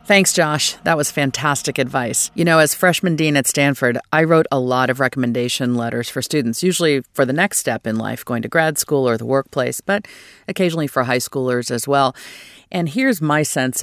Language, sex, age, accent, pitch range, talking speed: English, female, 40-59, American, 125-160 Hz, 205 wpm